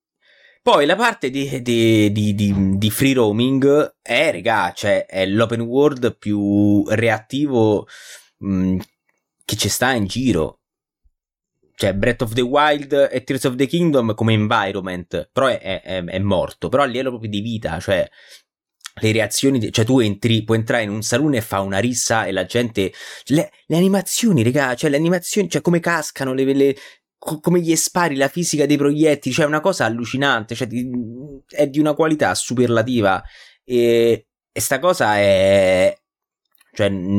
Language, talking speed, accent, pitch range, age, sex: Italian, 165 wpm, native, 110-145 Hz, 20-39, male